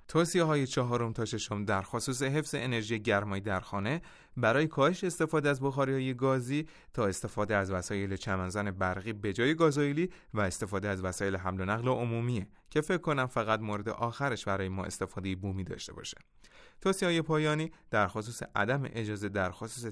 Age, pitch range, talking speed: 30-49, 100-150 Hz, 170 wpm